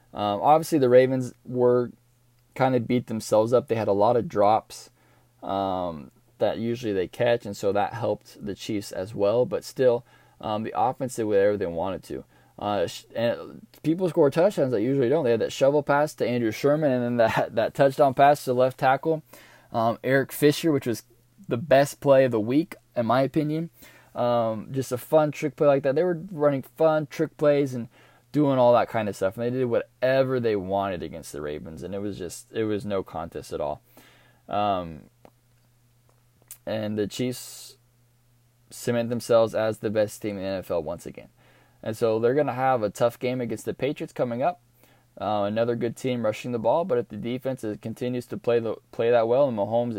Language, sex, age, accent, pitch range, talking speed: English, male, 20-39, American, 110-135 Hz, 205 wpm